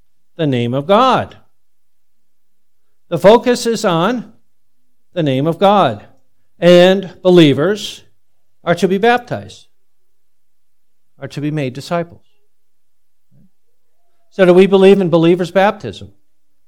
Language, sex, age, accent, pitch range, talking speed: English, male, 50-69, American, 120-190 Hz, 110 wpm